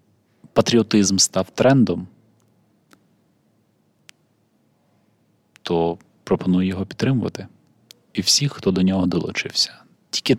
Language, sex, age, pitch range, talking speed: Ukrainian, male, 20-39, 90-110 Hz, 80 wpm